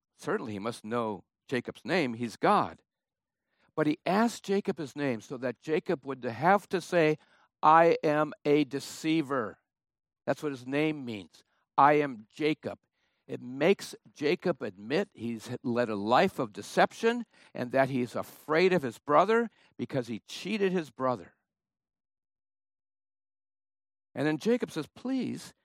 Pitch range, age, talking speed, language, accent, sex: 100-160 Hz, 60-79, 140 wpm, English, American, male